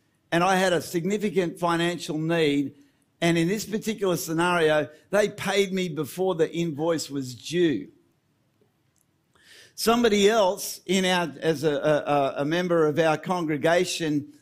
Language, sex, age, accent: English, male, 50-69, Australian